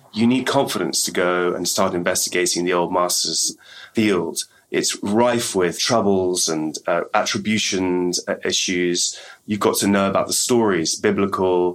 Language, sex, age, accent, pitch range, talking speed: Italian, male, 30-49, British, 90-110 Hz, 145 wpm